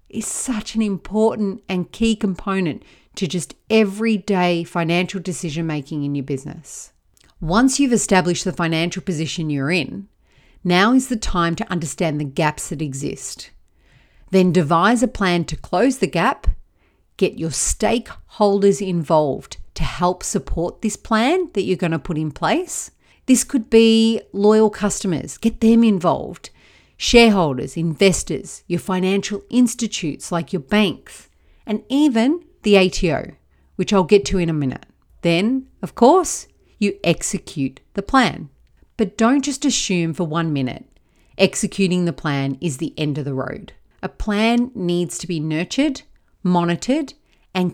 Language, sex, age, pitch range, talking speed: English, female, 40-59, 165-225 Hz, 145 wpm